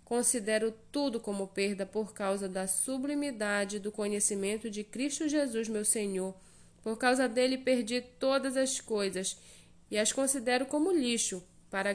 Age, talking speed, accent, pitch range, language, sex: 20-39, 140 wpm, Brazilian, 200-255 Hz, Portuguese, female